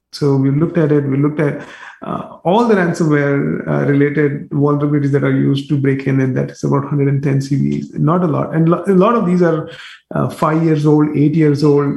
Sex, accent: male, Indian